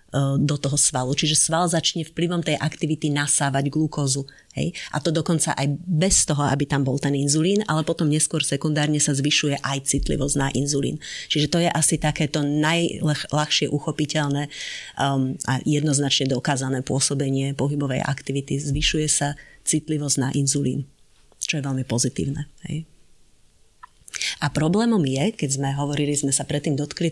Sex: female